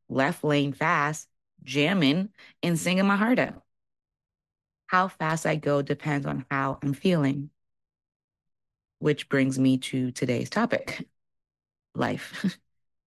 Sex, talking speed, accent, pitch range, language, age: female, 115 wpm, American, 140-165 Hz, English, 30-49